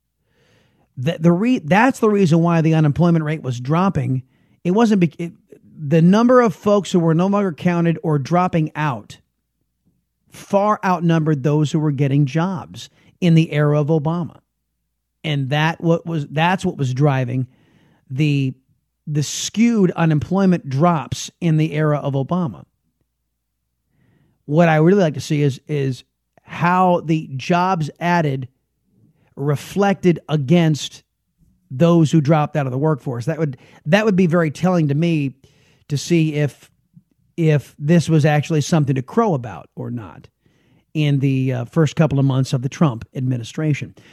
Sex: male